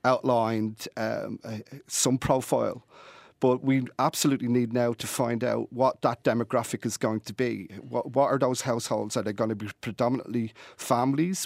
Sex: male